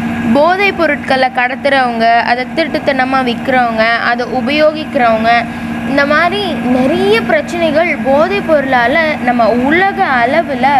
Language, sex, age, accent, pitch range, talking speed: Tamil, female, 20-39, native, 235-300 Hz, 95 wpm